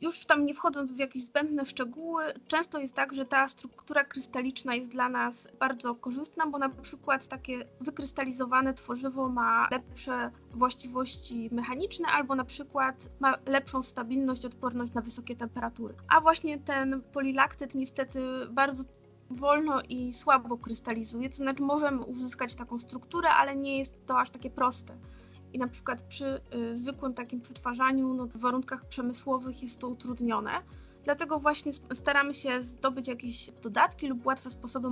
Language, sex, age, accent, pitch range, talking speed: Polish, female, 20-39, native, 245-275 Hz, 150 wpm